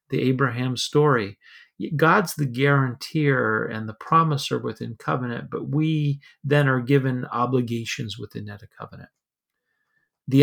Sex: male